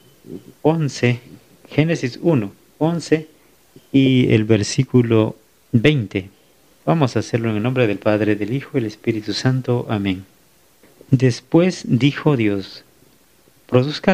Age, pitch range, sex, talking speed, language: 50-69, 115-145 Hz, male, 115 wpm, Spanish